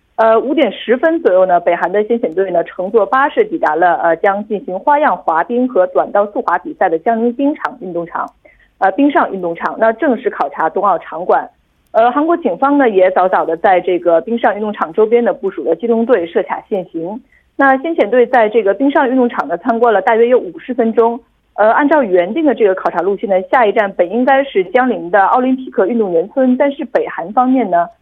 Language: Korean